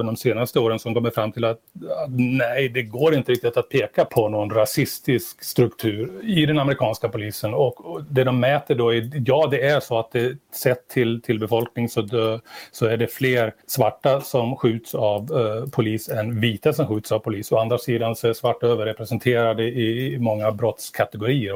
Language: Swedish